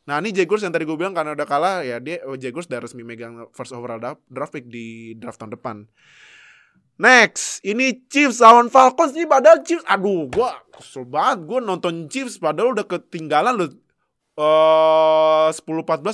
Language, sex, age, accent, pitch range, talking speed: Indonesian, male, 20-39, native, 145-225 Hz, 170 wpm